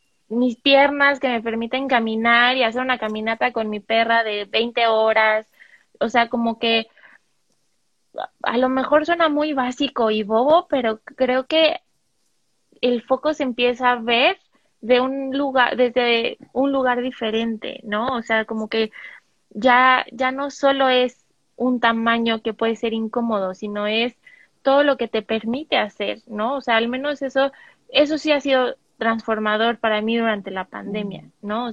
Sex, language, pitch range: female, Spanish, 220-265 Hz